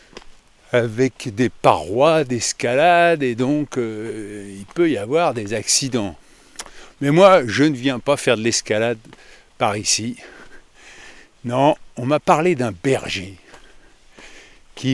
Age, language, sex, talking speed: 50-69, French, male, 125 wpm